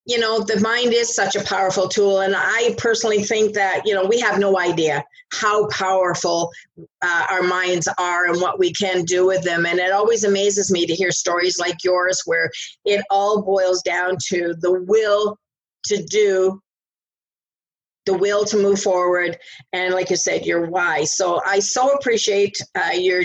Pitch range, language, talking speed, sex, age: 185-210 Hz, English, 180 wpm, female, 50-69